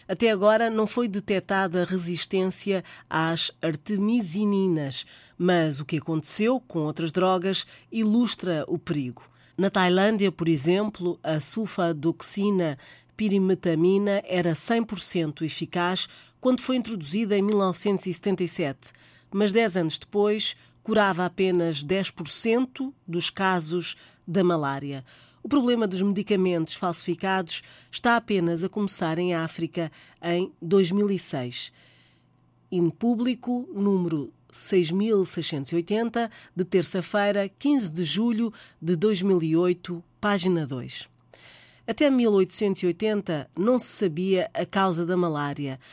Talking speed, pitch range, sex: 105 wpm, 165-205 Hz, female